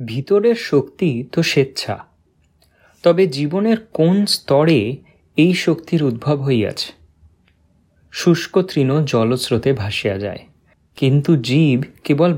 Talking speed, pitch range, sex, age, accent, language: 90 wpm, 110-165 Hz, male, 30-49, native, Bengali